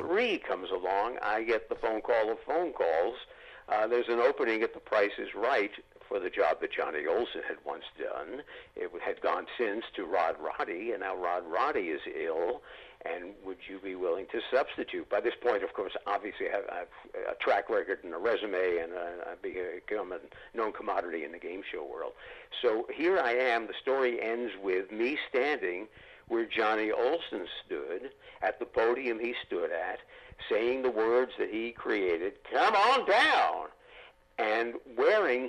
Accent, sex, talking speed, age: American, male, 175 wpm, 60-79